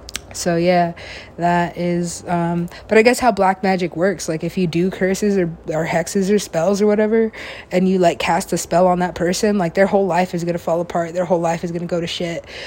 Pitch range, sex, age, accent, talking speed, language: 160-175 Hz, female, 20-39, American, 240 wpm, English